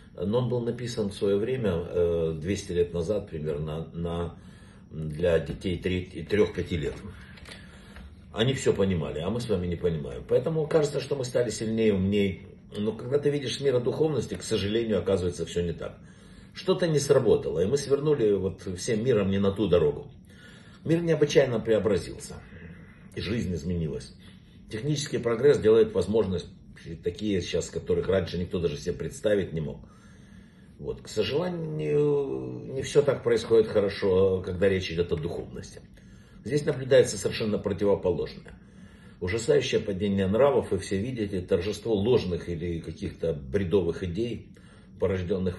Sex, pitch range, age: male, 90-145 Hz, 60-79